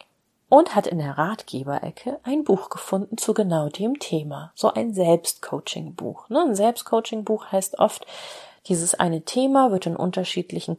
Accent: German